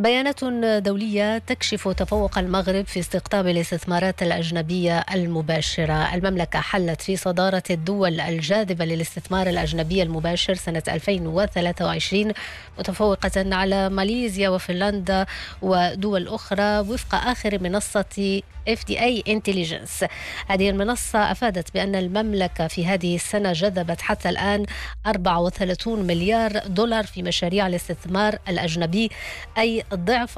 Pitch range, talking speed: 175-205 Hz, 105 wpm